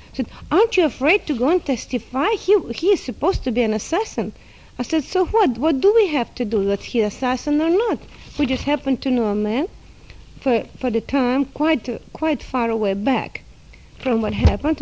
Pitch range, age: 225-290 Hz, 50-69